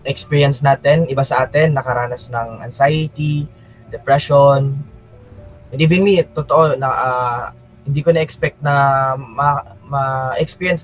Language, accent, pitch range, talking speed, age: Filipino, native, 120-155 Hz, 115 wpm, 20-39